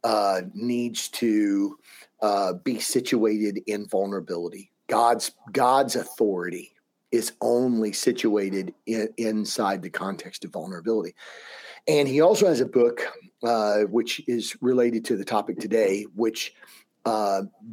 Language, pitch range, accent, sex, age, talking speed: English, 105-135 Hz, American, male, 40-59, 120 wpm